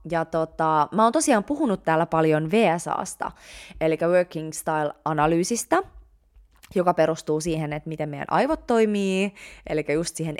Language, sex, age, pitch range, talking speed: Finnish, female, 20-39, 155-200 Hz, 135 wpm